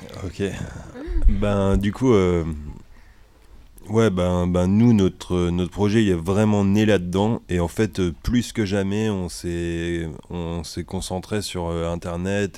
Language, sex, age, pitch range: French, male, 30-49, 80-100 Hz